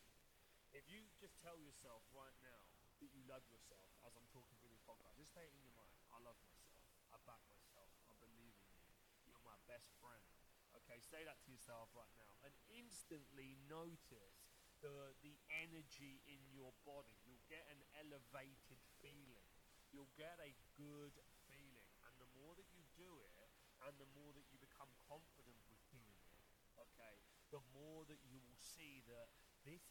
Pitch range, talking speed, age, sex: 120-145 Hz, 180 wpm, 20-39, male